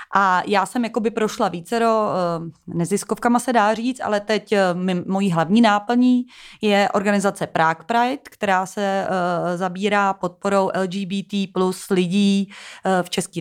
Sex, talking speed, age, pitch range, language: female, 120 wpm, 30-49, 180-205 Hz, Czech